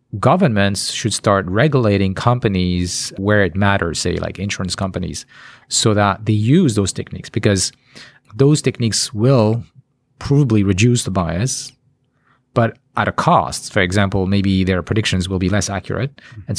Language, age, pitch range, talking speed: English, 40-59, 100-130 Hz, 145 wpm